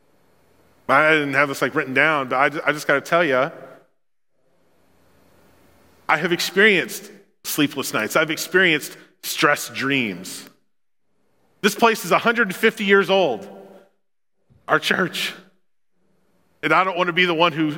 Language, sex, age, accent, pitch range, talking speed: English, male, 30-49, American, 150-205 Hz, 140 wpm